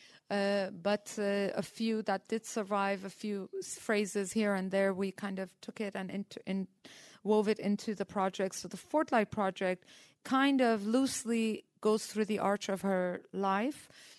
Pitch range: 185-215 Hz